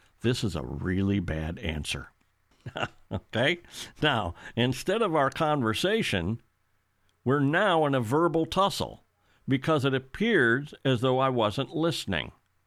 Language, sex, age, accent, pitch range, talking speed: English, male, 60-79, American, 105-135 Hz, 125 wpm